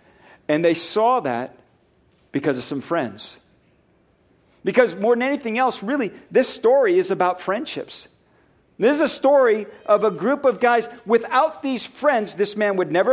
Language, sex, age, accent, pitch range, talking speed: English, male, 50-69, American, 170-225 Hz, 160 wpm